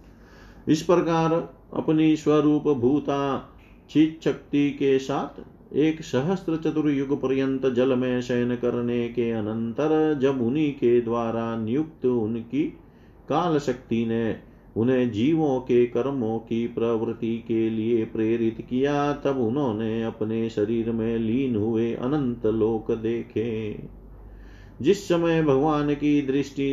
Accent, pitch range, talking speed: native, 110-140 Hz, 115 wpm